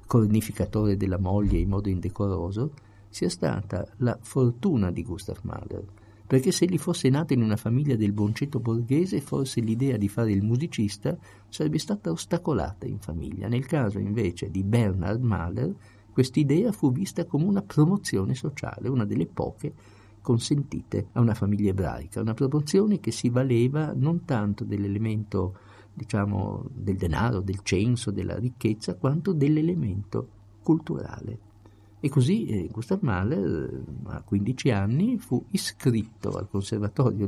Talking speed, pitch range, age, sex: 140 wpm, 100-135 Hz, 50-69, male